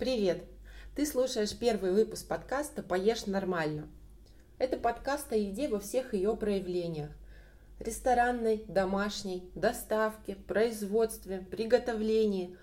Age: 20-39